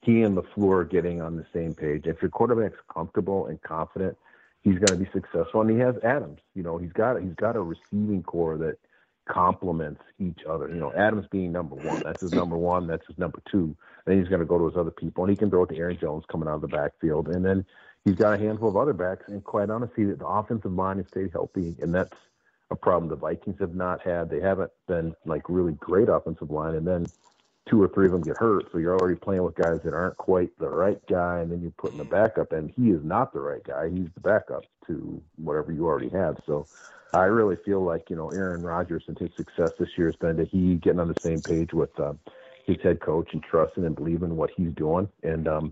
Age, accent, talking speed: 40-59, American, 250 wpm